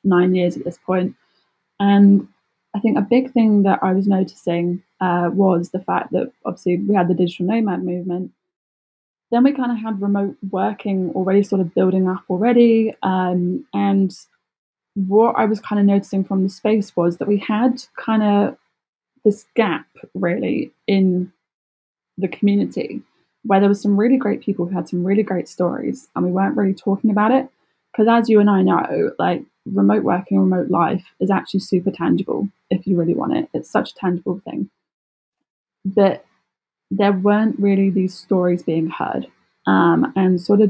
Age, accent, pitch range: 10-29, British, 180-210 Hz